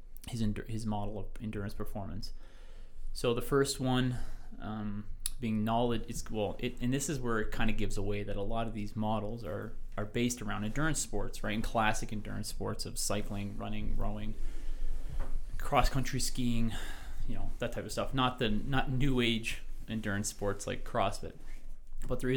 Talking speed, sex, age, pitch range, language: 175 wpm, male, 20-39, 105-120 Hz, English